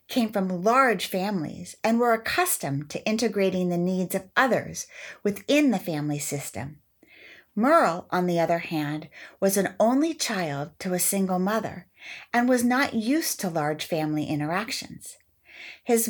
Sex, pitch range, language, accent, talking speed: female, 175-235 Hz, English, American, 145 wpm